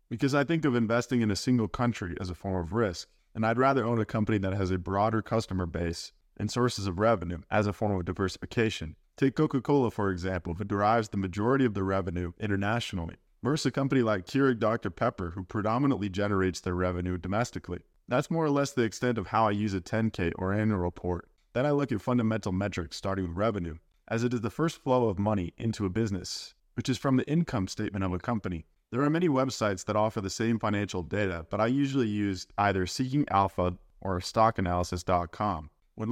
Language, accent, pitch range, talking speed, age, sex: English, American, 95-120 Hz, 205 wpm, 20-39, male